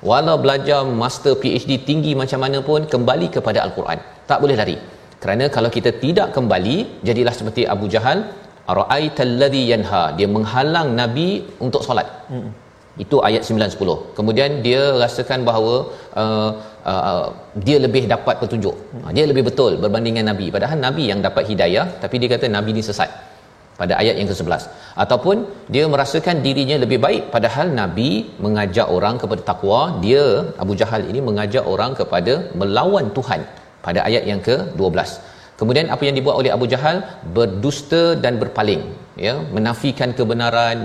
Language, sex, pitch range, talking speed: Malayalam, male, 105-140 Hz, 150 wpm